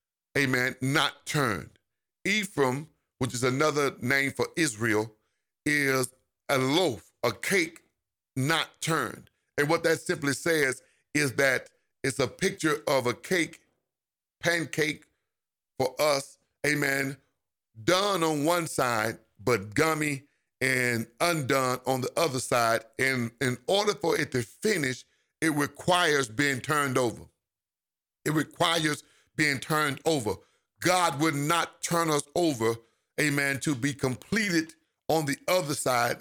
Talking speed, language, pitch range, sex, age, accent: 130 wpm, English, 130-165 Hz, male, 50-69, American